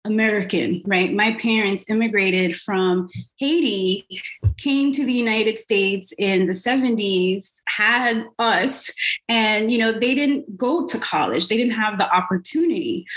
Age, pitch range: 30-49, 180-230 Hz